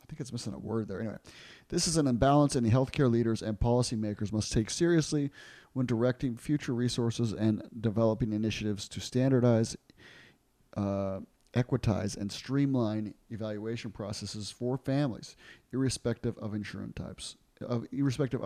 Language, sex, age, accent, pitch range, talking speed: English, male, 30-49, American, 110-130 Hz, 125 wpm